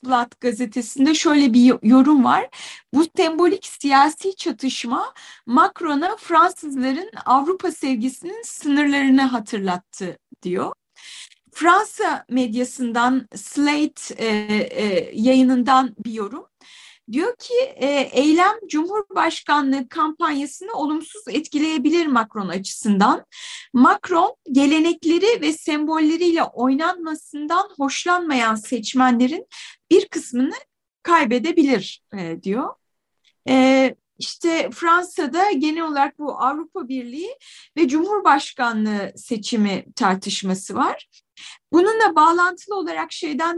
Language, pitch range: Turkish, 255-340 Hz